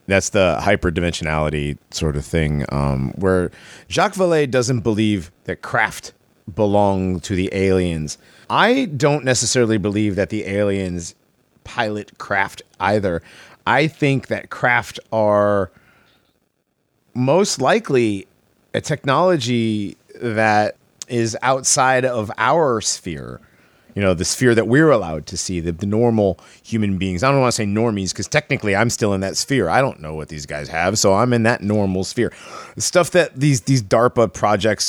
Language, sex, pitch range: English, male, 95-125 Hz